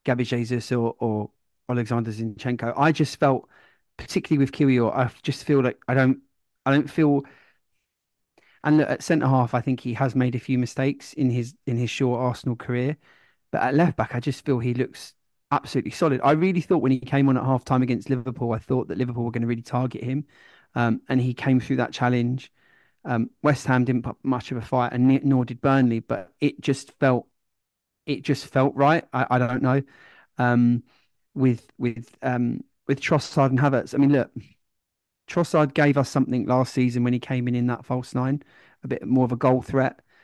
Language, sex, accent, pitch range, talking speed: English, male, British, 120-135 Hz, 205 wpm